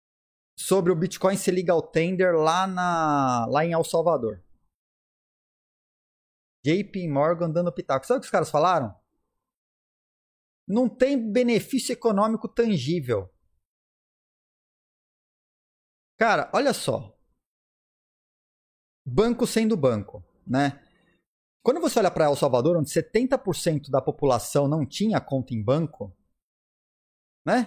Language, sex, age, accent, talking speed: Portuguese, male, 30-49, Brazilian, 110 wpm